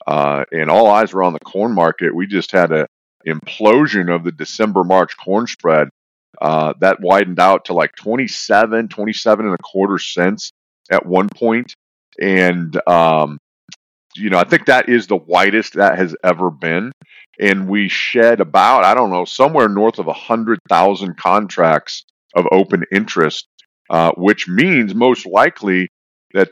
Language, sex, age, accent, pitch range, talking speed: English, male, 40-59, American, 90-110 Hz, 165 wpm